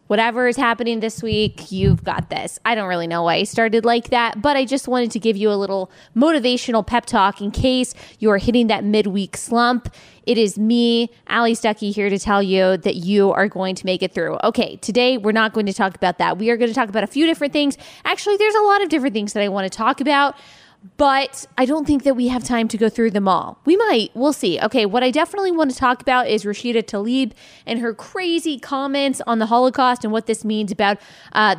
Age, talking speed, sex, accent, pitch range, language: 20-39, 240 wpm, female, American, 210-255 Hz, English